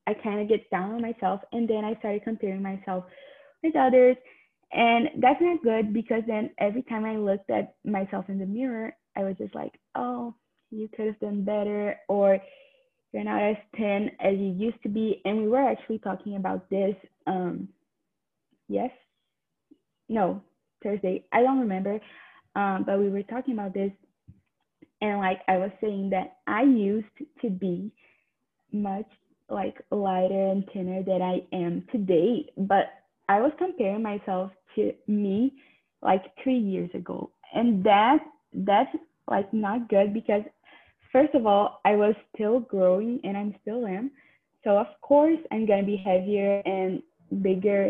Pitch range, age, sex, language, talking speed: 195-245 Hz, 20-39, female, English, 165 wpm